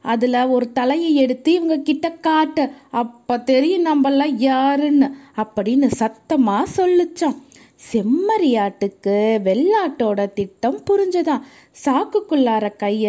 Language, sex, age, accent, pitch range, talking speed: Tamil, female, 20-39, native, 215-295 Hz, 90 wpm